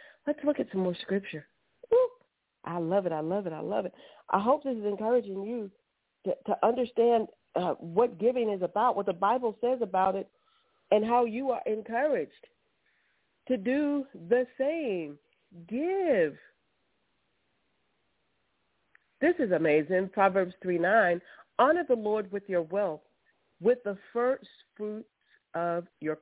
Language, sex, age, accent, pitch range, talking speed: English, female, 40-59, American, 160-230 Hz, 145 wpm